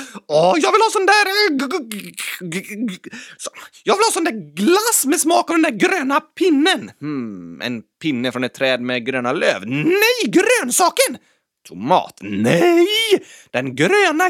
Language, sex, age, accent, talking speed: Swedish, male, 30-49, native, 145 wpm